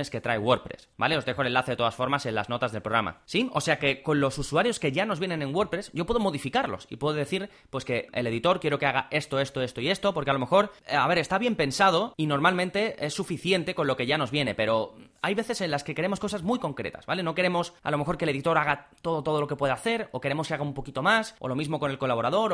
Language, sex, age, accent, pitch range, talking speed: Spanish, male, 20-39, Spanish, 135-190 Hz, 280 wpm